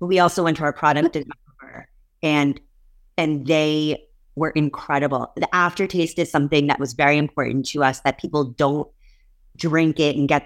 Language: English